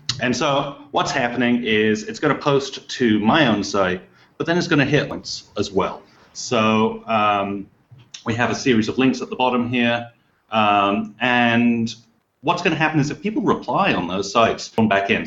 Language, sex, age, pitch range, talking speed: English, male, 30-49, 110-135 Hz, 195 wpm